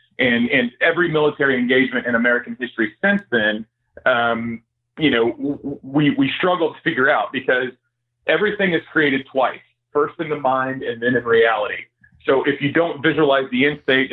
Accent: American